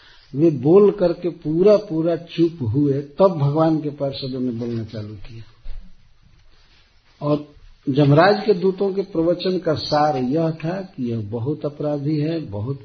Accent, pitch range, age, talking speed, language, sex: native, 115-165 Hz, 50-69, 145 wpm, Hindi, male